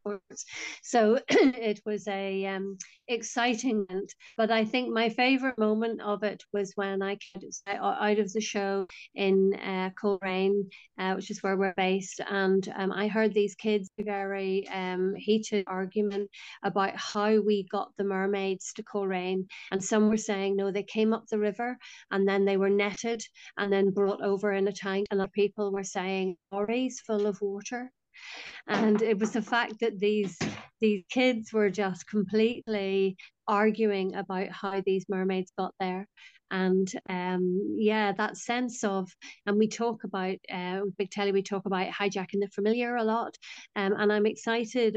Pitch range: 195-220 Hz